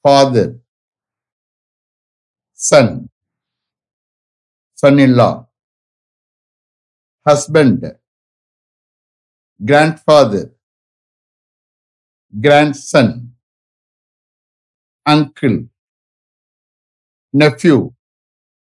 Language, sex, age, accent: English, male, 60-79, Indian